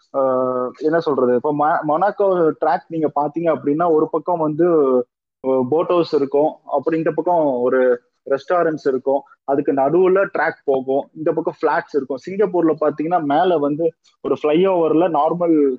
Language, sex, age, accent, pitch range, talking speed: Tamil, male, 20-39, native, 150-195 Hz, 140 wpm